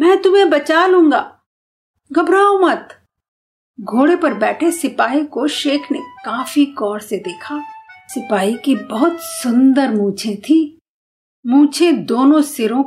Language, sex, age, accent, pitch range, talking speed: Hindi, female, 50-69, native, 245-330 Hz, 120 wpm